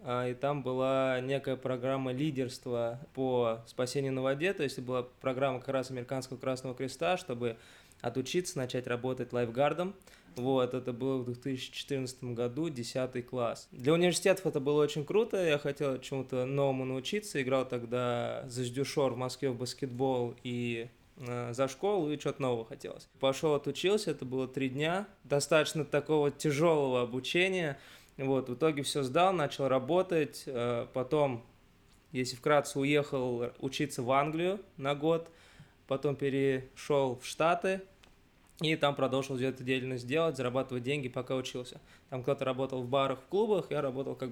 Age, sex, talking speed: 20-39, male, 145 wpm